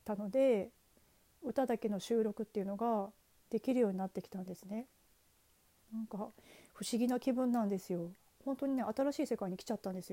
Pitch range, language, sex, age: 205-280 Hz, Japanese, female, 40-59